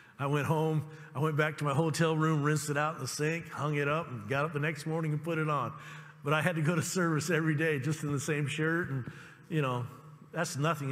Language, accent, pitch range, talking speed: English, American, 145-180 Hz, 265 wpm